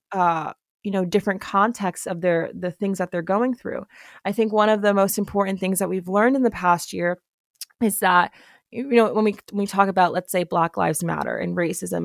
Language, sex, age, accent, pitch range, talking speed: English, female, 20-39, American, 180-215 Hz, 215 wpm